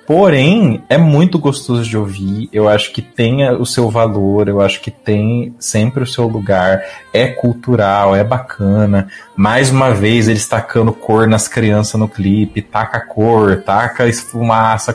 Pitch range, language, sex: 105-135 Hz, Portuguese, male